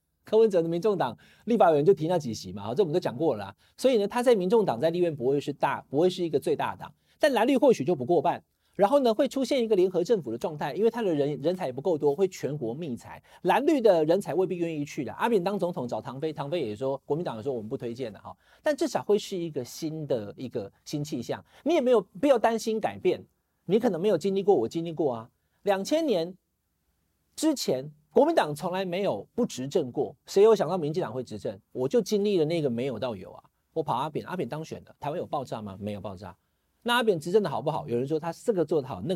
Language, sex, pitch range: Chinese, male, 135-230 Hz